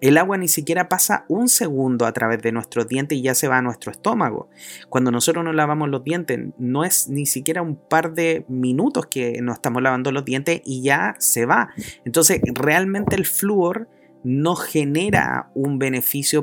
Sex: male